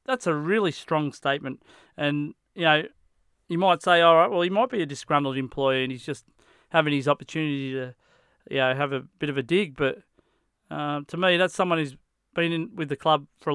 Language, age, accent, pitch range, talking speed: English, 30-49, Australian, 145-170 Hz, 215 wpm